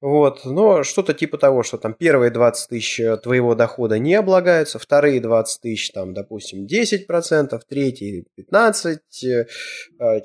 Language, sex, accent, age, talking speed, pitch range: Russian, male, native, 20-39, 135 wpm, 115-165 Hz